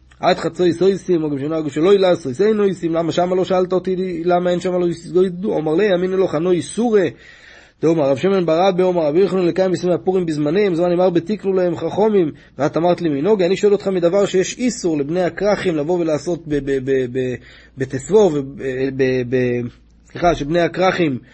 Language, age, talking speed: Hebrew, 30-49, 150 wpm